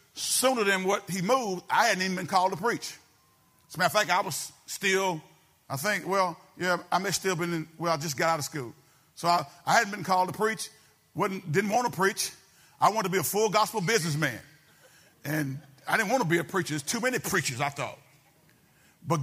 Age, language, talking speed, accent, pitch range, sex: 50-69, English, 225 wpm, American, 175-220 Hz, male